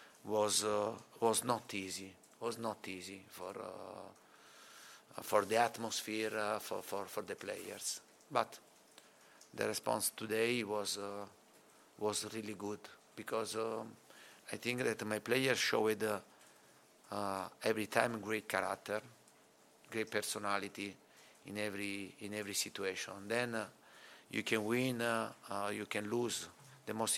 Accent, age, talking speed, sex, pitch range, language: Italian, 50-69, 135 wpm, male, 100-110 Hz, English